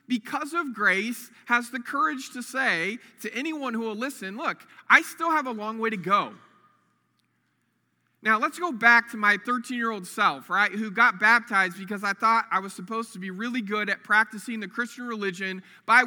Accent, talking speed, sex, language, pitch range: American, 185 wpm, male, English, 205-265 Hz